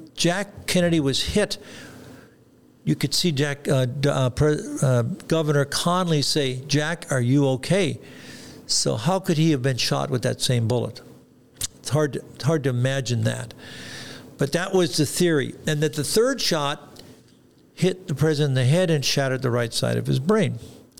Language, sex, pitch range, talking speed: English, male, 130-165 Hz, 175 wpm